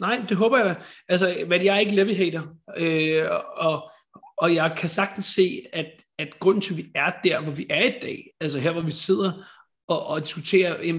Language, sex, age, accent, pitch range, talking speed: Danish, male, 30-49, native, 155-190 Hz, 220 wpm